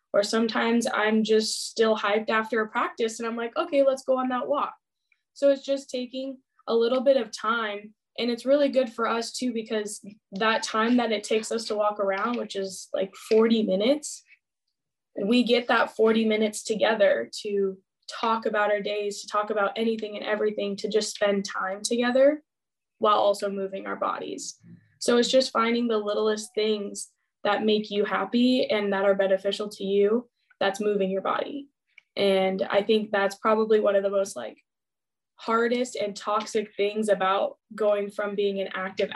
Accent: American